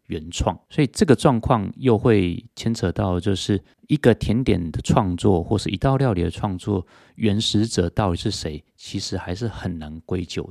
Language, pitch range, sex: Chinese, 90-115 Hz, male